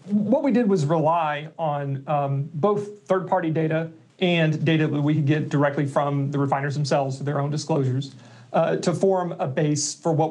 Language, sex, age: English, male, 40-59